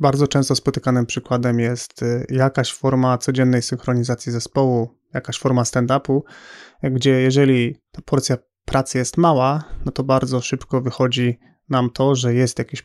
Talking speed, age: 140 wpm, 30-49